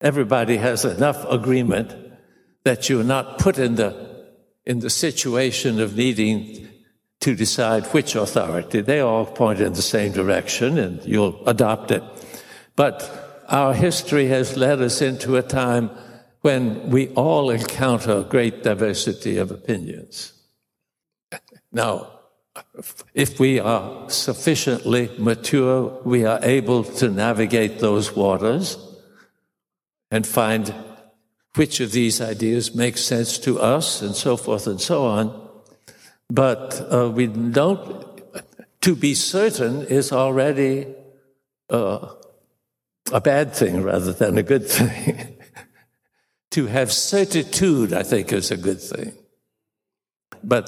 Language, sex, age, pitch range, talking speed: English, male, 60-79, 110-135 Hz, 125 wpm